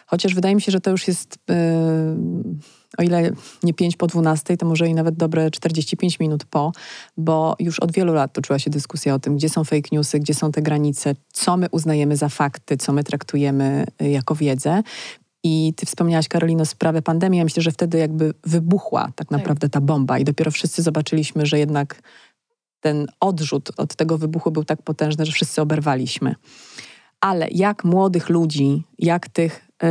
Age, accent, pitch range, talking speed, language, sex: 30-49, native, 150-170 Hz, 180 wpm, Polish, female